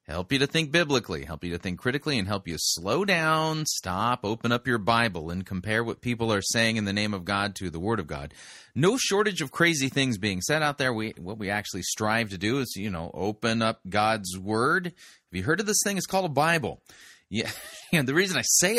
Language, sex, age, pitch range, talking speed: English, male, 30-49, 100-135 Hz, 240 wpm